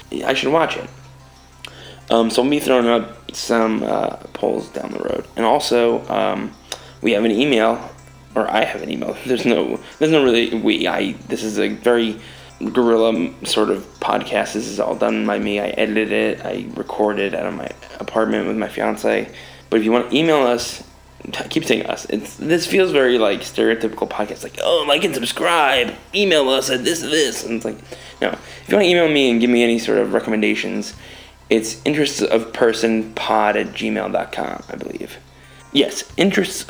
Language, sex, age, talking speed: English, male, 20-39, 185 wpm